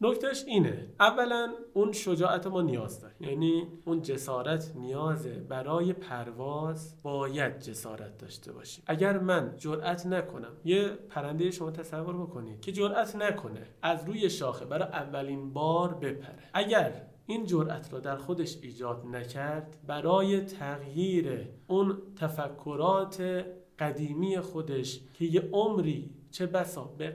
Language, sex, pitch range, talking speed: Persian, male, 140-185 Hz, 125 wpm